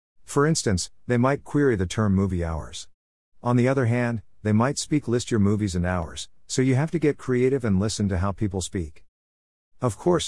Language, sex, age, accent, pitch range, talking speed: English, male, 50-69, American, 85-115 Hz, 205 wpm